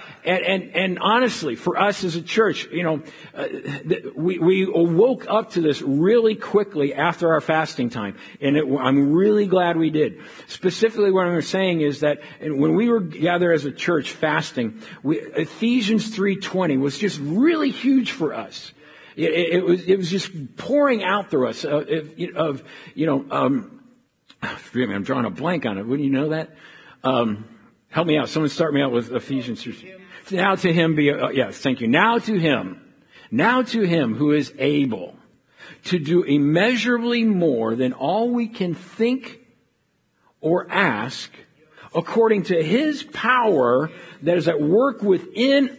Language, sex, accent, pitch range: English, male, American, 155-225 Hz